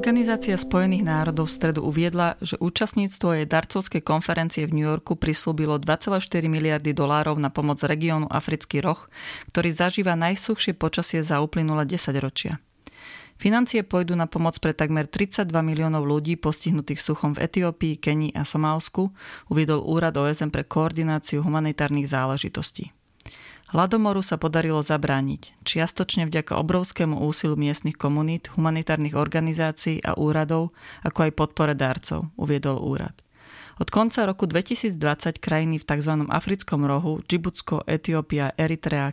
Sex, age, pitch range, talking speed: female, 30-49, 150-175 Hz, 130 wpm